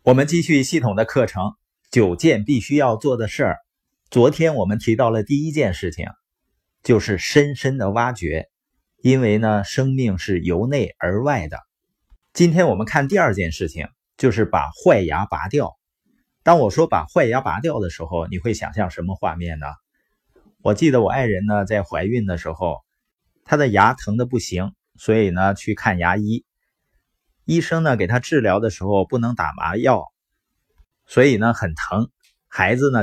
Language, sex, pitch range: Chinese, male, 95-130 Hz